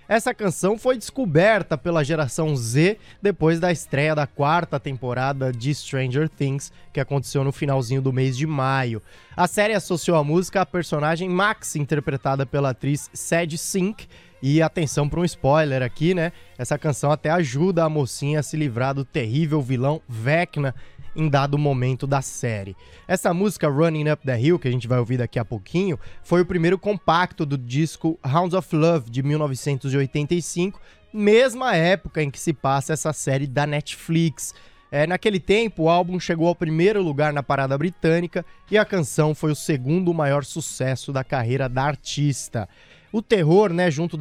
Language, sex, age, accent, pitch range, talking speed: Portuguese, male, 20-39, Brazilian, 140-175 Hz, 170 wpm